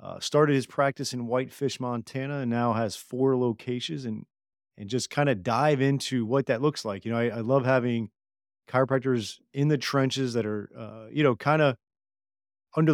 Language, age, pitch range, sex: English, 30-49, 110-130 Hz, male